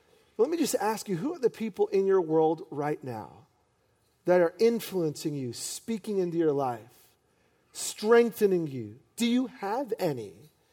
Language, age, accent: English, 40-59, American